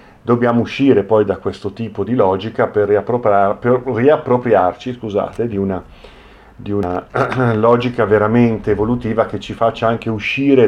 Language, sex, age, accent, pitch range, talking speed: Italian, male, 40-59, native, 100-120 Hz, 130 wpm